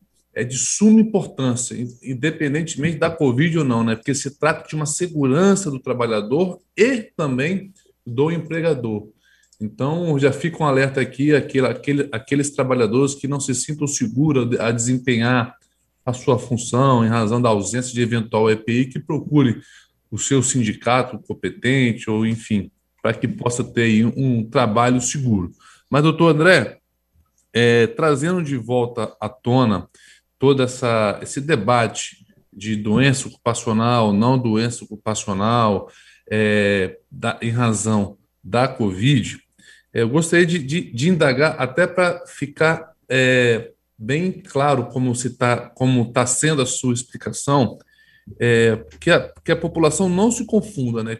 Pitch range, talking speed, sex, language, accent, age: 115-155 Hz, 145 wpm, male, Portuguese, Brazilian, 20-39